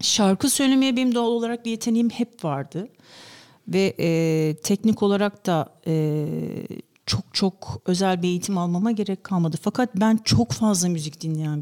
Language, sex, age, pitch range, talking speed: Turkish, female, 50-69, 170-225 Hz, 150 wpm